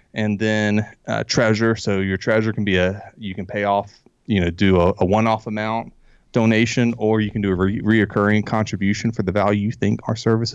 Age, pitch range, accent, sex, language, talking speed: 30-49, 100-115 Hz, American, male, English, 205 wpm